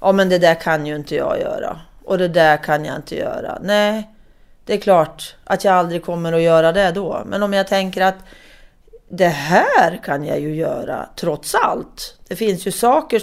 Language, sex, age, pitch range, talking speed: Swedish, female, 30-49, 170-220 Hz, 205 wpm